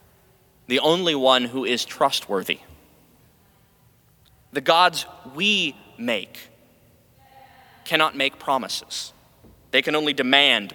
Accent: American